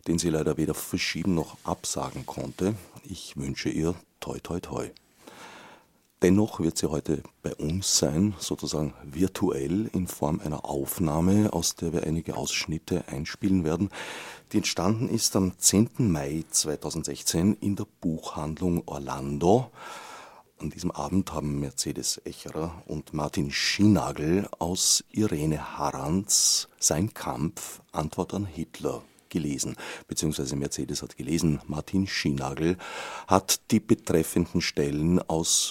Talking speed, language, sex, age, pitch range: 125 wpm, German, male, 40-59, 75-95 Hz